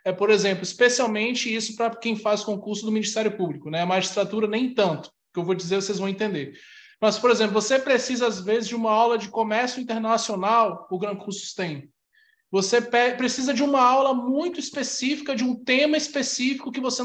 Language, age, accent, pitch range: Portuguese, 20-39, Brazilian, 195-240 Hz